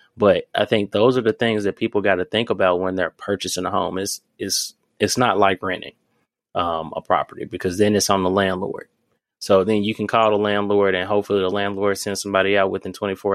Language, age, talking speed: English, 20-39, 220 wpm